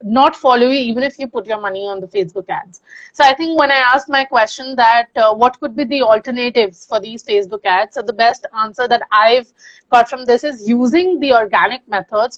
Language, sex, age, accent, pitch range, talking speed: English, female, 30-49, Indian, 220-265 Hz, 225 wpm